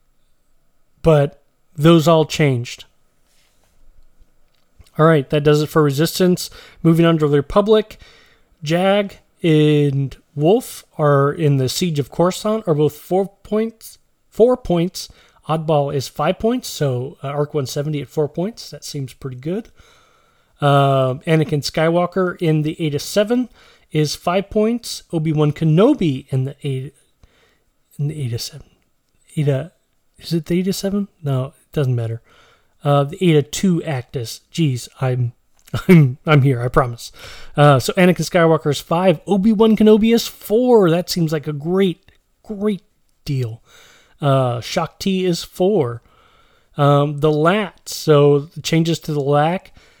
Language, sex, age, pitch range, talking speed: English, male, 30-49, 140-185 Hz, 145 wpm